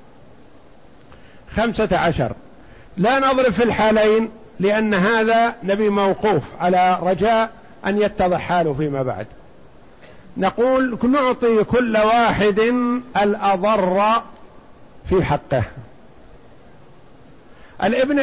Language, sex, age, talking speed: Arabic, male, 50-69, 80 wpm